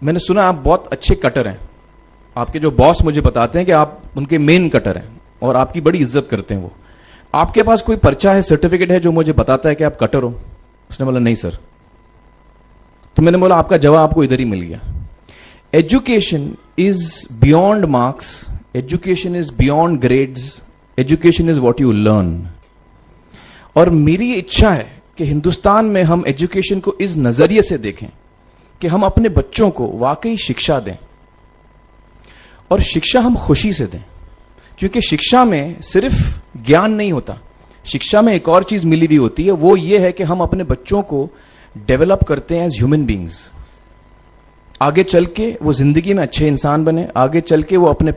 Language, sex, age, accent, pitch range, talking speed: Hindi, male, 30-49, native, 120-185 Hz, 175 wpm